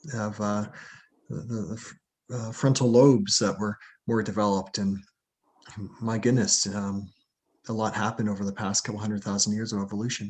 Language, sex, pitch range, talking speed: English, male, 100-115 Hz, 155 wpm